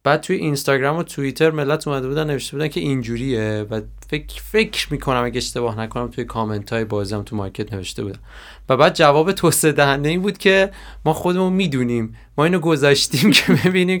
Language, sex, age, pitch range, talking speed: Persian, male, 30-49, 115-155 Hz, 195 wpm